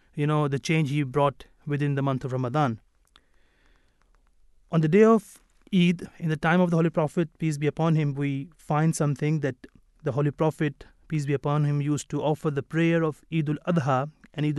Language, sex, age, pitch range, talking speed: English, male, 30-49, 140-165 Hz, 200 wpm